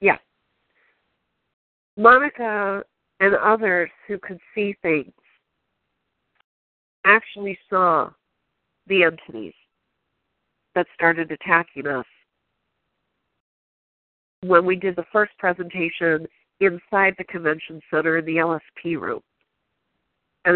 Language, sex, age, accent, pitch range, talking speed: English, female, 50-69, American, 155-195 Hz, 90 wpm